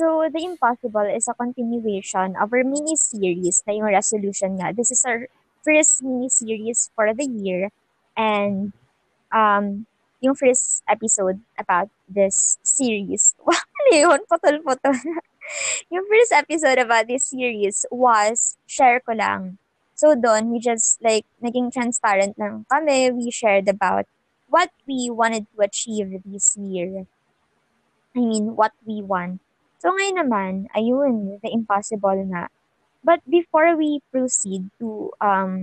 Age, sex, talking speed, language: 20-39, male, 130 wpm, Filipino